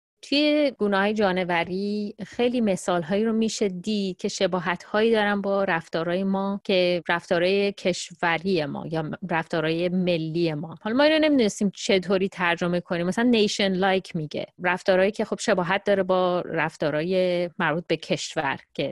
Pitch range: 165-200 Hz